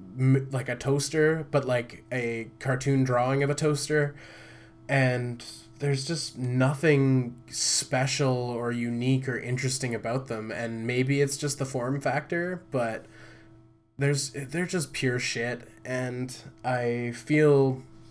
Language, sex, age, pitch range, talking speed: English, male, 20-39, 115-135 Hz, 125 wpm